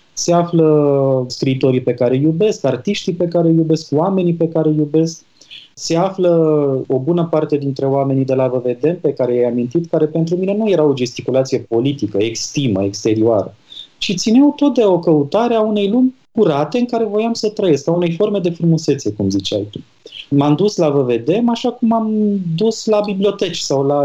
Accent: native